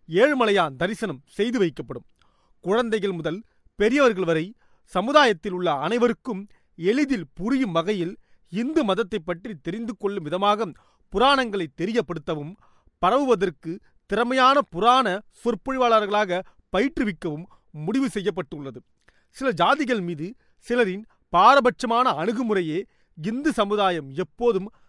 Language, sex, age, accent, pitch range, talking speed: Tamil, male, 40-59, native, 170-235 Hz, 90 wpm